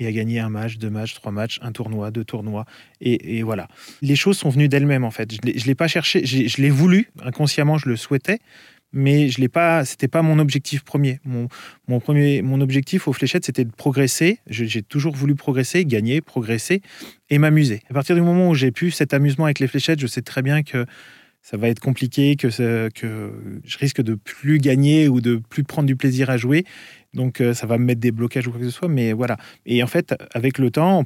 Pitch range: 120-145 Hz